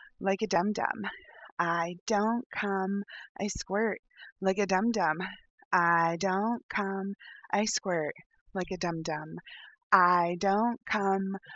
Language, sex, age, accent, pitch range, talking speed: English, female, 30-49, American, 170-230 Hz, 130 wpm